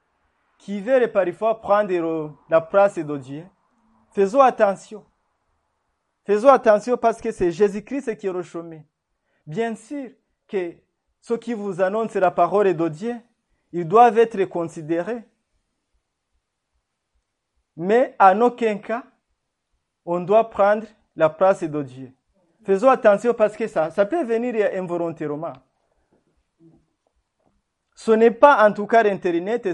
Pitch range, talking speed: 165-225 Hz, 125 wpm